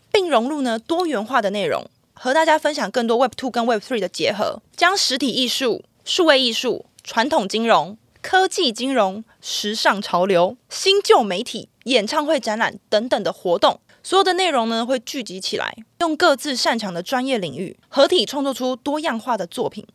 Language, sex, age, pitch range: Chinese, female, 20-39, 200-270 Hz